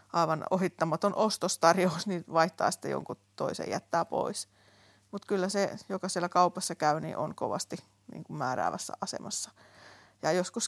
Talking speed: 140 wpm